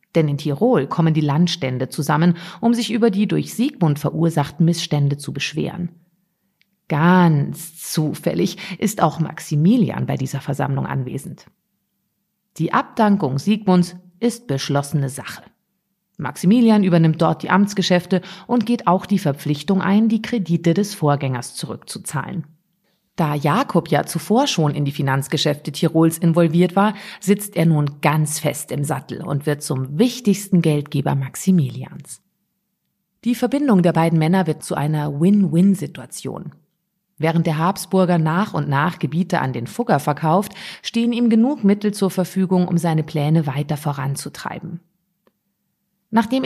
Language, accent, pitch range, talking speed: German, German, 150-195 Hz, 135 wpm